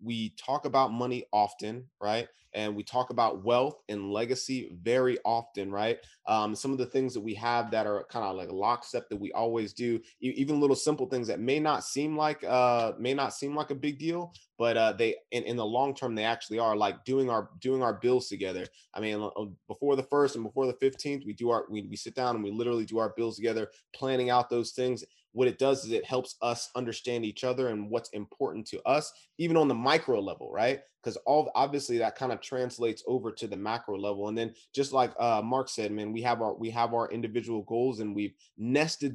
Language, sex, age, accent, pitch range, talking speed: English, male, 20-39, American, 110-130 Hz, 230 wpm